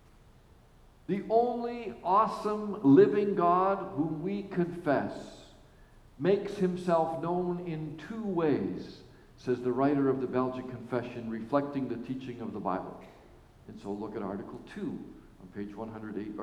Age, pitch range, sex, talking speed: 50-69, 130-185 Hz, male, 130 wpm